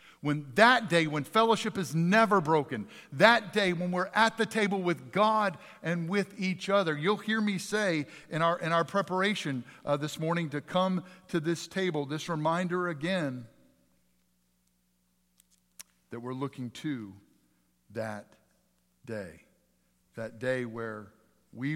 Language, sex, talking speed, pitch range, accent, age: English, male, 140 wpm, 90-155 Hz, American, 50-69